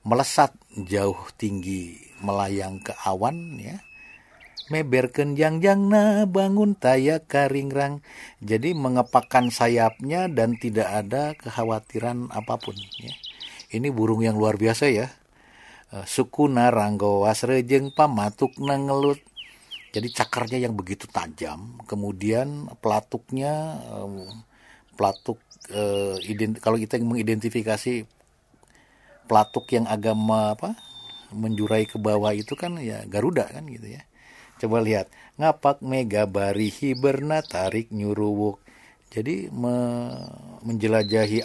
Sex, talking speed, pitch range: male, 95 wpm, 105-130 Hz